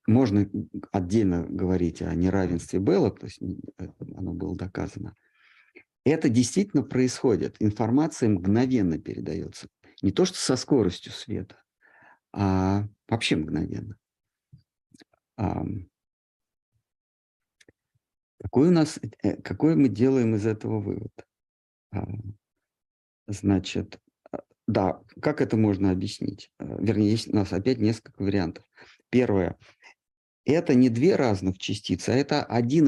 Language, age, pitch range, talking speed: Russian, 50-69, 95-125 Hz, 95 wpm